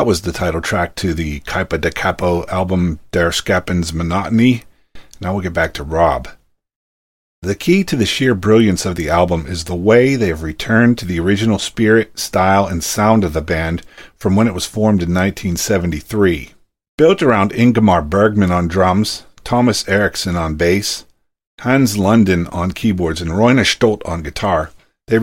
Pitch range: 90-110 Hz